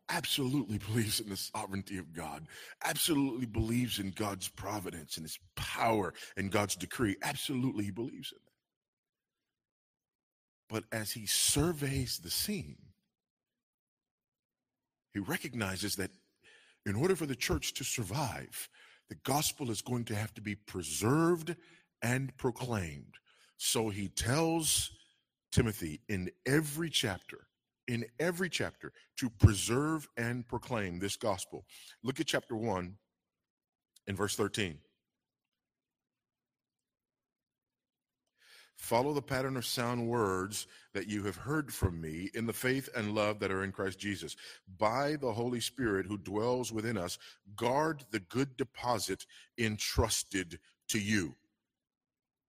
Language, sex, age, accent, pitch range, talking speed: English, male, 40-59, American, 100-130 Hz, 125 wpm